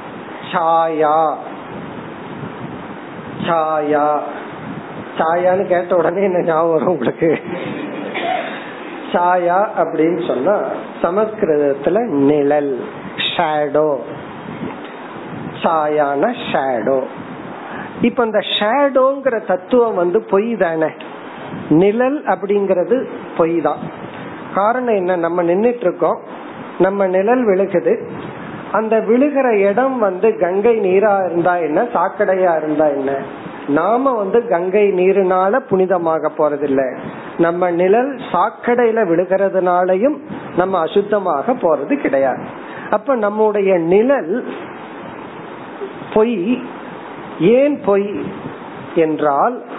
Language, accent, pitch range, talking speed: Tamil, native, 165-220 Hz, 60 wpm